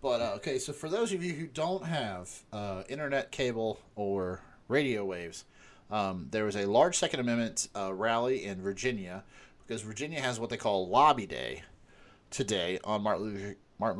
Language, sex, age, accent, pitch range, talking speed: English, male, 30-49, American, 95-130 Hz, 165 wpm